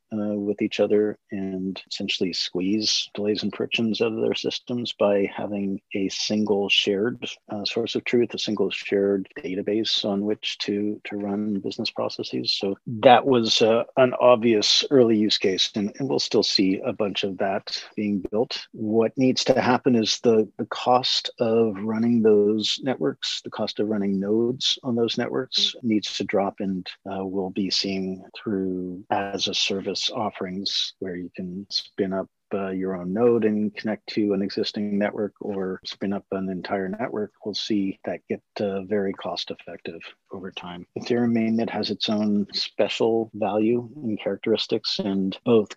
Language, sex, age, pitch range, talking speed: English, male, 50-69, 95-110 Hz, 170 wpm